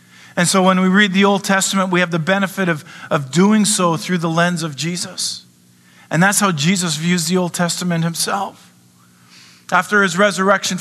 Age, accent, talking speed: 40-59, American, 185 wpm